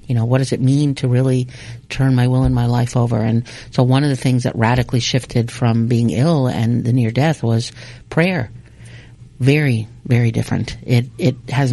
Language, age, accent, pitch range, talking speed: English, 50-69, American, 120-140 Hz, 200 wpm